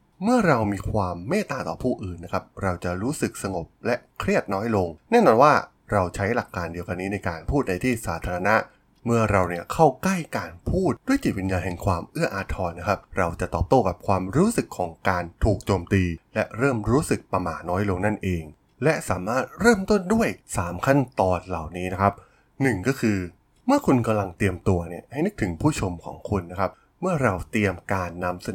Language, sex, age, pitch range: Thai, male, 20-39, 90-125 Hz